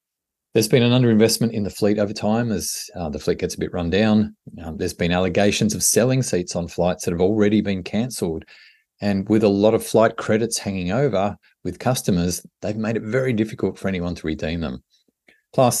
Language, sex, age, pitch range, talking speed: English, male, 30-49, 85-110 Hz, 205 wpm